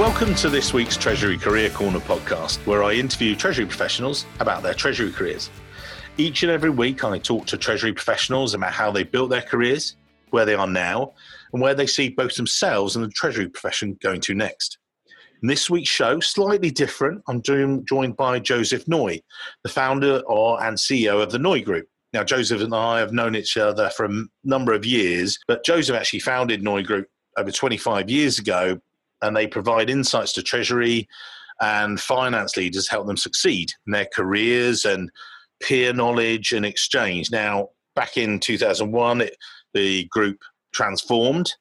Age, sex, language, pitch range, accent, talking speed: 40-59, male, English, 105-130 Hz, British, 170 wpm